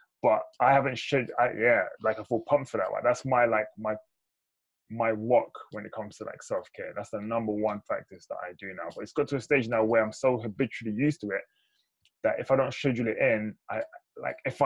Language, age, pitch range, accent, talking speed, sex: English, 20-39, 110-130 Hz, British, 240 wpm, male